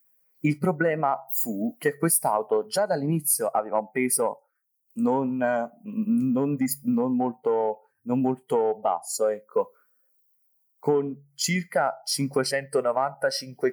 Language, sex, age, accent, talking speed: Italian, male, 30-49, native, 80 wpm